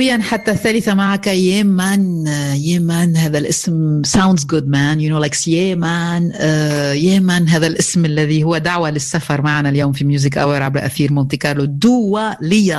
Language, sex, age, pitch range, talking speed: Arabic, female, 50-69, 145-185 Hz, 160 wpm